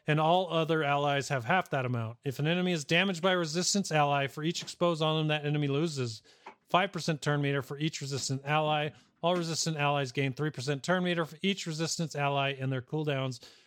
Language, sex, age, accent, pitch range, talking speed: English, male, 40-59, American, 135-170 Hz, 200 wpm